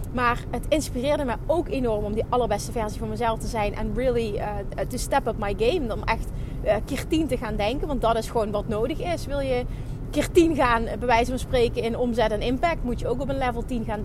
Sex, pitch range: female, 225-295 Hz